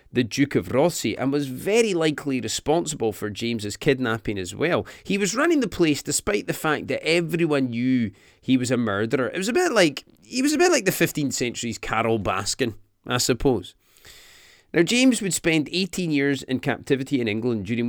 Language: English